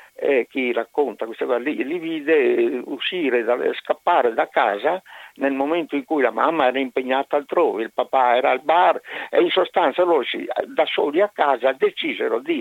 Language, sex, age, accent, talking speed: Italian, male, 60-79, native, 185 wpm